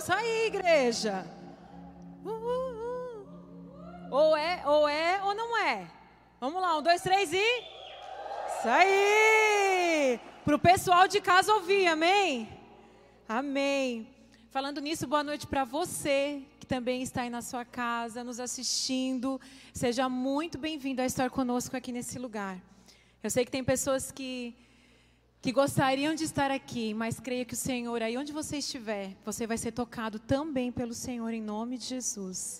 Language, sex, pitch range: Portuguese, female, 230-295 Hz